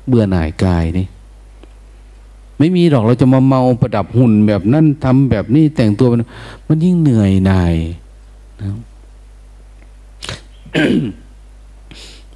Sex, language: male, Thai